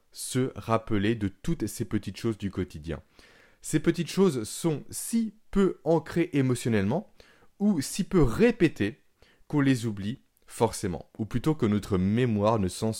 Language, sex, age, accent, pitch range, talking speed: French, male, 20-39, French, 100-140 Hz, 150 wpm